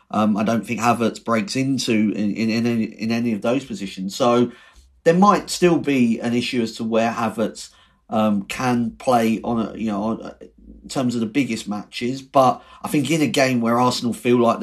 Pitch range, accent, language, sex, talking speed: 110-135 Hz, British, English, male, 205 wpm